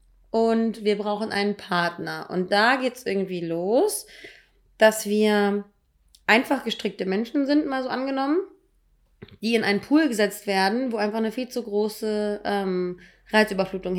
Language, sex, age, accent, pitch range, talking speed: German, female, 20-39, German, 205-235 Hz, 145 wpm